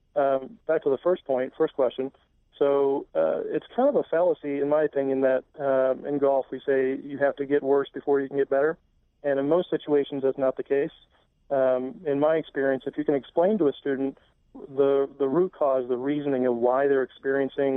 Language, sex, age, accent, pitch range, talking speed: English, male, 40-59, American, 130-145 Hz, 215 wpm